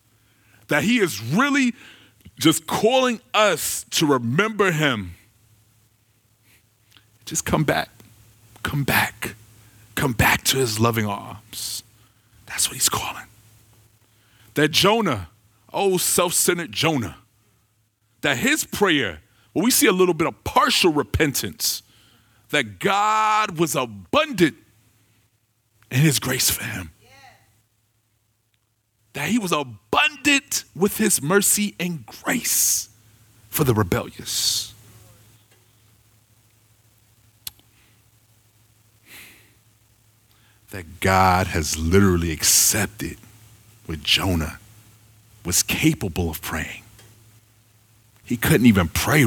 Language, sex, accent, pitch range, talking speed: English, male, American, 110-120 Hz, 95 wpm